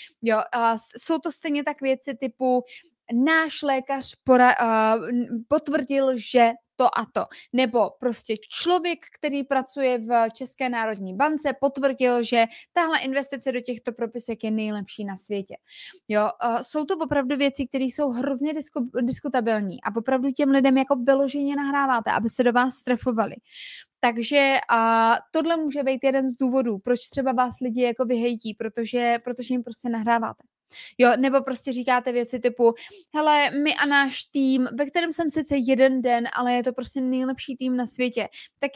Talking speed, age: 160 wpm, 20-39